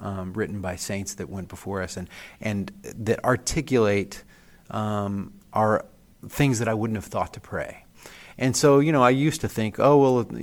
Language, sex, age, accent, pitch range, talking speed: English, male, 30-49, American, 100-120 Hz, 185 wpm